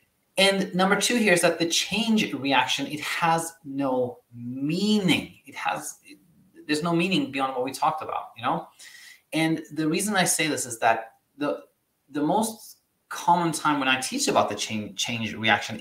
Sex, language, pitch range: male, English, 115-155 Hz